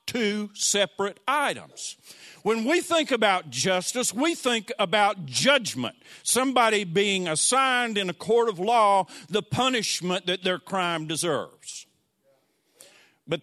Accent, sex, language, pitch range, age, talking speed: American, male, English, 160-235 Hz, 50-69, 120 wpm